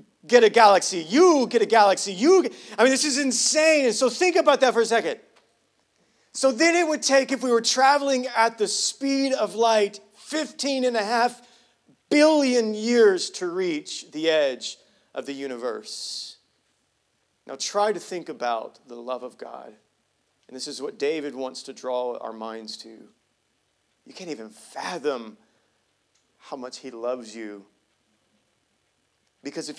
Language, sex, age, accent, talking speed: English, male, 40-59, American, 160 wpm